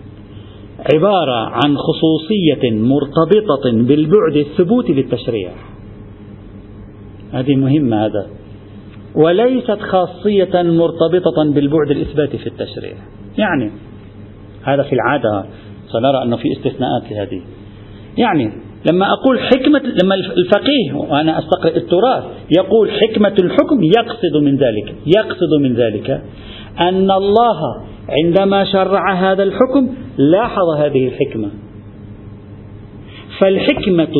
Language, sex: Arabic, male